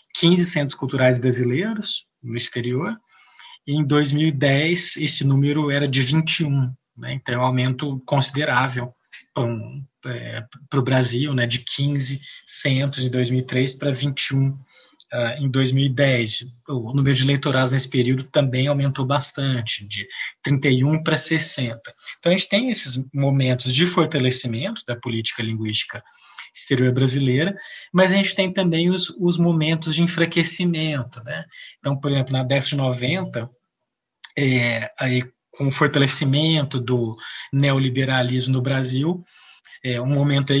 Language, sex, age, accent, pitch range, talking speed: Portuguese, male, 20-39, Brazilian, 125-150 Hz, 130 wpm